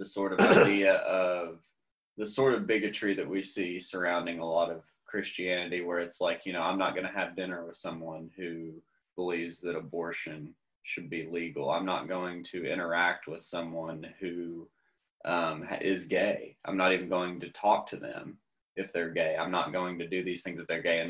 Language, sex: English, male